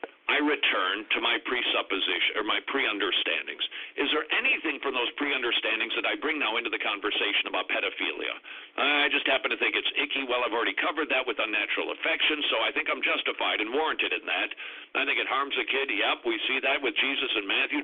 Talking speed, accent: 210 wpm, American